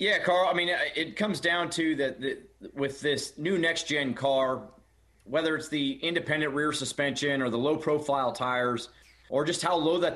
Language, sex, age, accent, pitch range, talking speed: English, male, 30-49, American, 135-165 Hz, 170 wpm